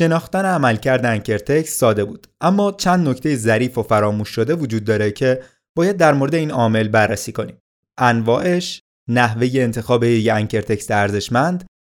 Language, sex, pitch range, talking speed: Persian, male, 115-155 Hz, 140 wpm